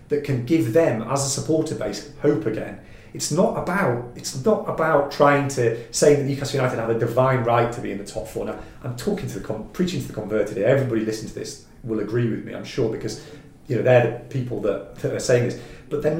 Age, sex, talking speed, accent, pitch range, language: 40-59, male, 245 wpm, British, 110-145 Hz, English